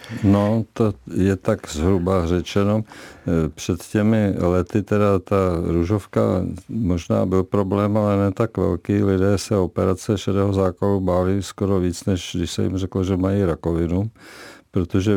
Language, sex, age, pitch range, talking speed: Czech, male, 50-69, 90-100 Hz, 140 wpm